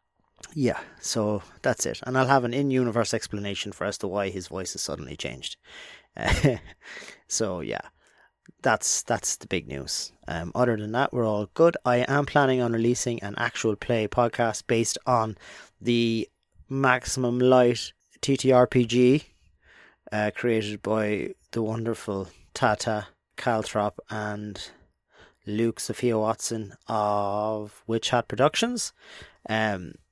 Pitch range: 105-125 Hz